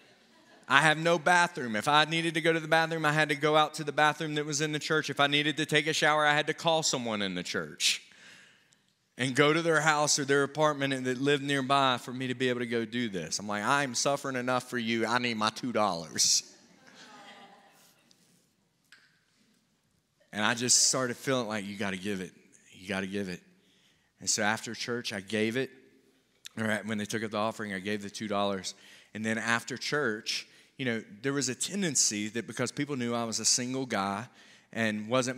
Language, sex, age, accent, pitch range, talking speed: English, male, 30-49, American, 115-160 Hz, 210 wpm